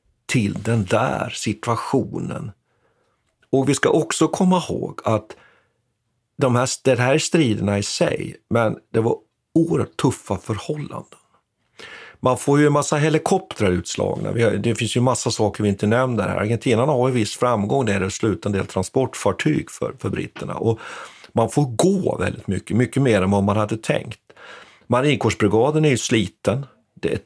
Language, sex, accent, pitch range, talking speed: Swedish, male, native, 100-130 Hz, 170 wpm